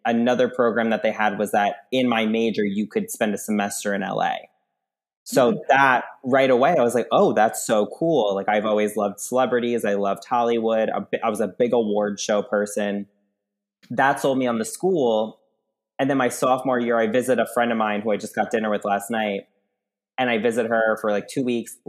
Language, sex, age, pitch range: English, male, 20-39, 105-130 Hz